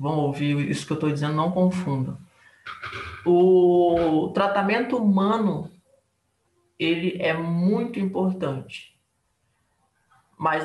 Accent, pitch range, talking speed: Brazilian, 165-205 Hz, 95 wpm